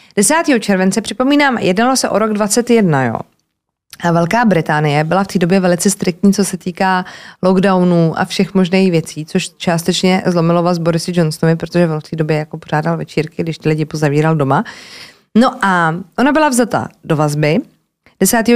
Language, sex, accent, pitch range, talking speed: Czech, female, native, 170-215 Hz, 170 wpm